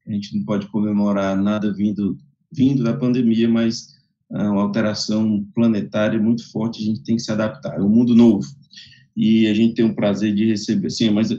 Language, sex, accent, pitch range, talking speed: English, male, Brazilian, 105-120 Hz, 205 wpm